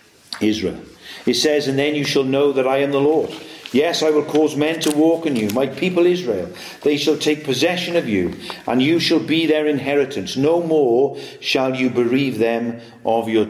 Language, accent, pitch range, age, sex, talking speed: English, British, 140-175 Hz, 50-69, male, 200 wpm